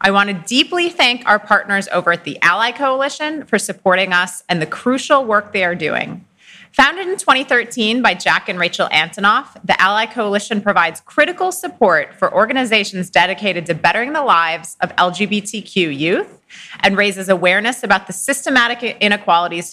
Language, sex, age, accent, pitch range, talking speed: English, female, 30-49, American, 180-235 Hz, 160 wpm